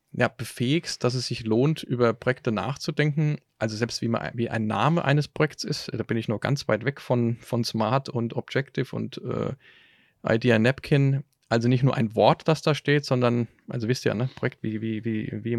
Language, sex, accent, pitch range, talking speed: German, male, German, 115-150 Hz, 210 wpm